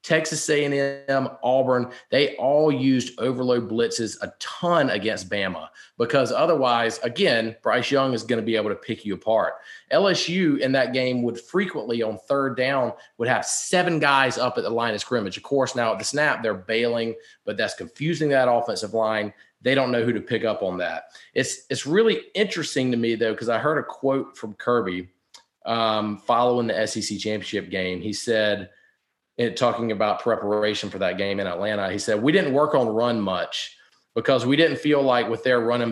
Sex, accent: male, American